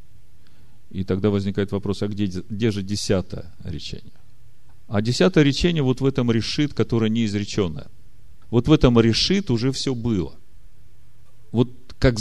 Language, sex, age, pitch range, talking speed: Russian, male, 40-59, 95-125 Hz, 140 wpm